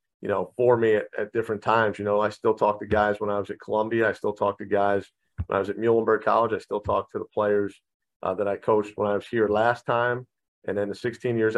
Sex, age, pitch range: male, 40-59, 100-115 Hz